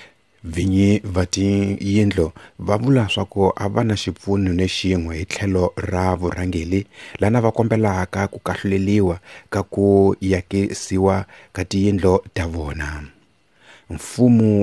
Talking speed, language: 85 wpm, English